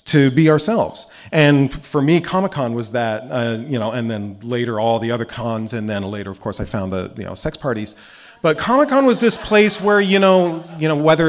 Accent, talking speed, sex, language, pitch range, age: American, 225 wpm, male, English, 115-150 Hz, 40-59